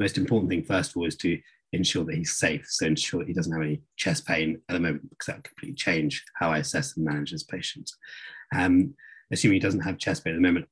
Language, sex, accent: English, male, British